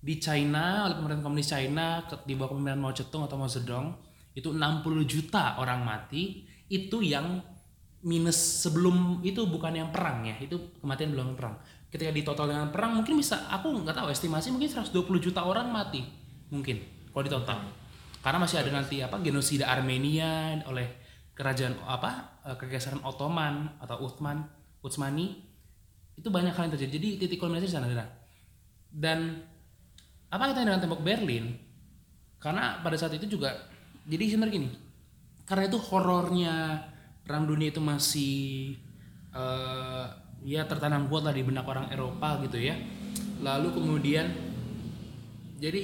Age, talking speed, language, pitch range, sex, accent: 20-39, 140 wpm, Indonesian, 135-170 Hz, male, native